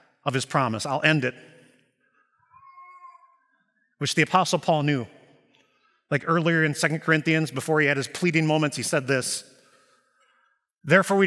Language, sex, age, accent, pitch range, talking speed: English, male, 30-49, American, 155-190 Hz, 145 wpm